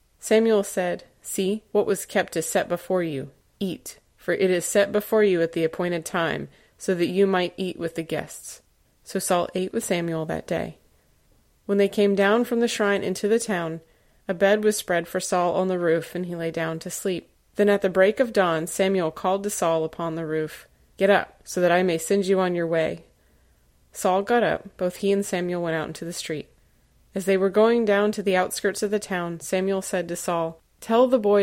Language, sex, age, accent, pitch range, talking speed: English, female, 20-39, American, 170-205 Hz, 220 wpm